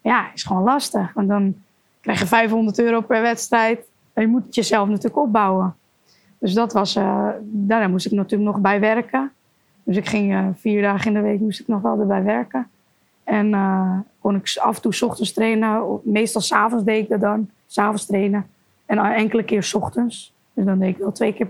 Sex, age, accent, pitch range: female, 20-39, Dutch, 200-235 Hz